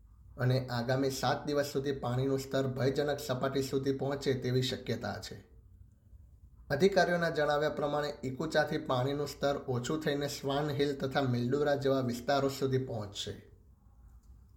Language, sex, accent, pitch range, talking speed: Gujarati, male, native, 115-145 Hz, 125 wpm